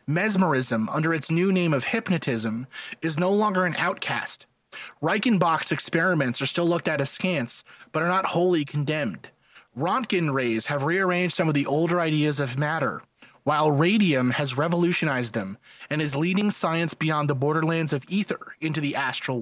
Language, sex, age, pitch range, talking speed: English, male, 30-49, 145-185 Hz, 160 wpm